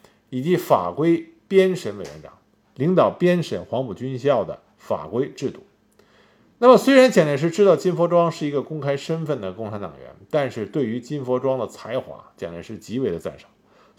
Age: 50-69